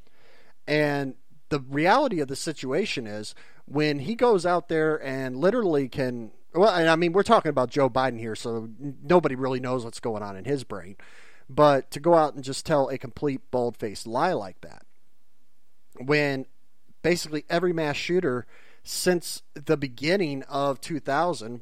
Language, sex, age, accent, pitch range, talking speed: English, male, 40-59, American, 130-175 Hz, 160 wpm